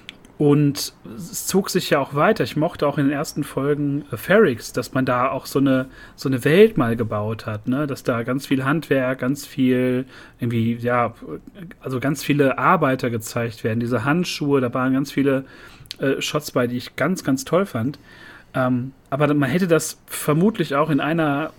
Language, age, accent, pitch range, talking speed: German, 40-59, German, 125-165 Hz, 190 wpm